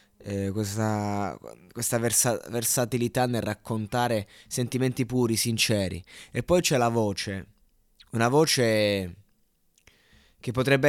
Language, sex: Italian, male